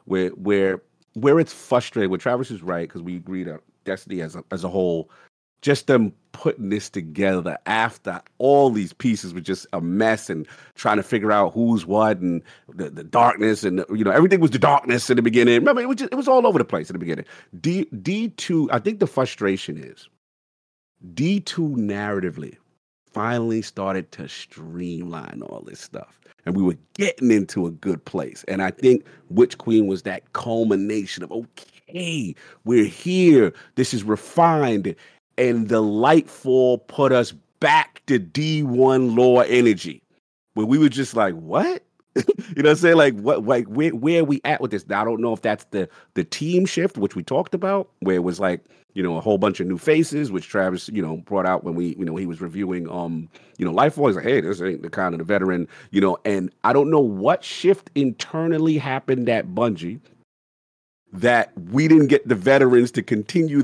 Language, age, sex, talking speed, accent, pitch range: English, 40-59, male, 195 wpm, American, 95-140 Hz